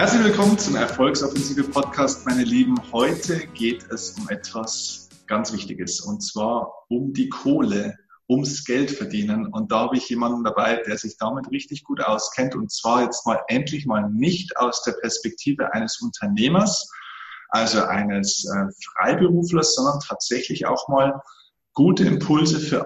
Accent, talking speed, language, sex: German, 145 wpm, German, male